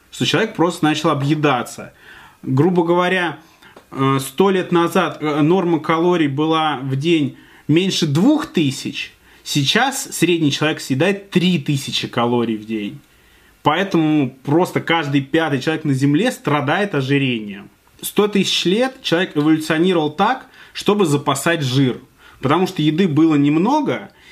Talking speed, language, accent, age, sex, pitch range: 120 wpm, Russian, native, 20-39, male, 140-175 Hz